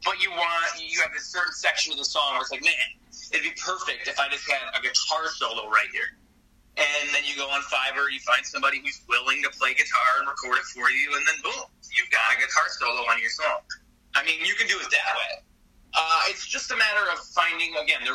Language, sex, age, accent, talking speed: English, male, 20-39, American, 245 wpm